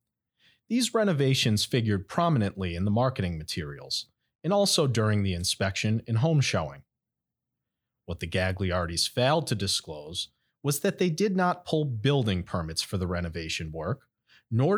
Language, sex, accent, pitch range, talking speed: English, male, American, 95-145 Hz, 140 wpm